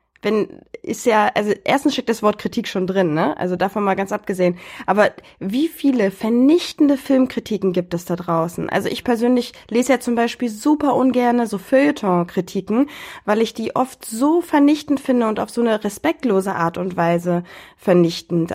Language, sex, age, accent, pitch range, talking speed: German, female, 20-39, German, 205-255 Hz, 170 wpm